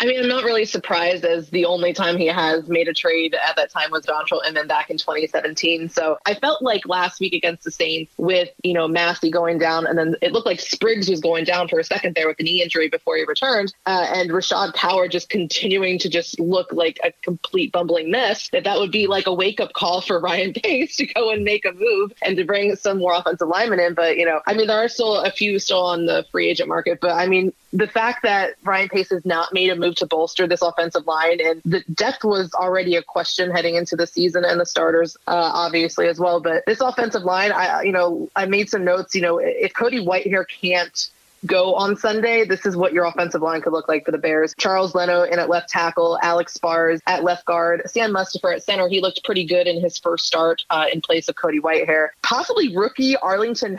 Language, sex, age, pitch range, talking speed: English, female, 20-39, 170-200 Hz, 240 wpm